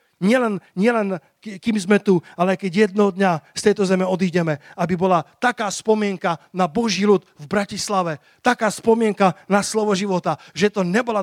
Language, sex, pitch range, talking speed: Slovak, male, 155-200 Hz, 160 wpm